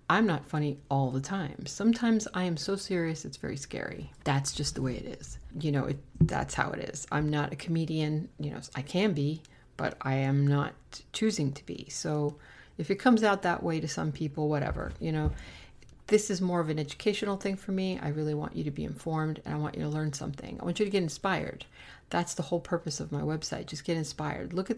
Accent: American